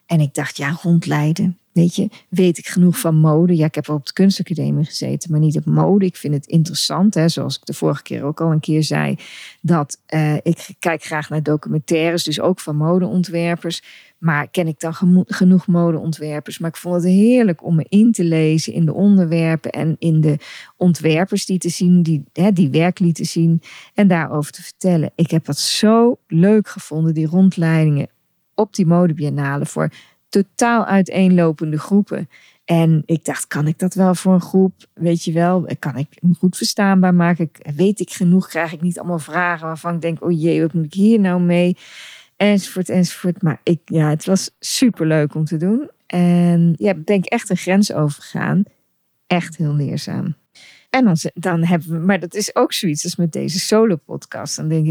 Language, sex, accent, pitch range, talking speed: Dutch, female, Dutch, 155-185 Hz, 195 wpm